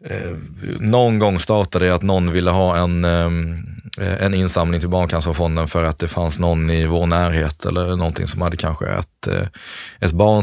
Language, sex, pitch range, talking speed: Swedish, male, 85-110 Hz, 160 wpm